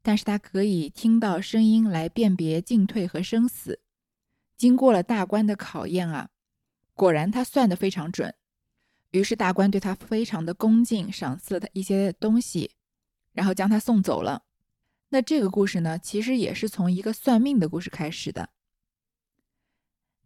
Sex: female